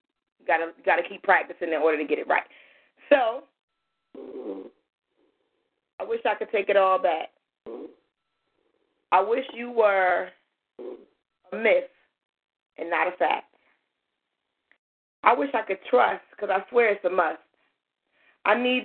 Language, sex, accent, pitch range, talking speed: English, female, American, 190-265 Hz, 140 wpm